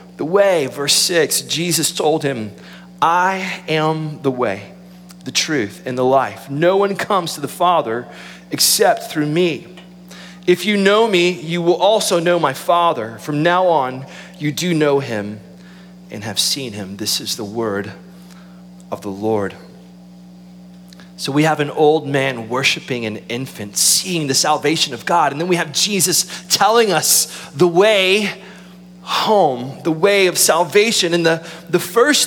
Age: 30-49